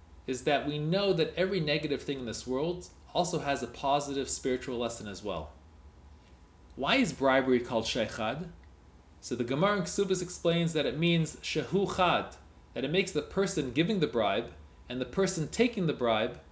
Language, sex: English, male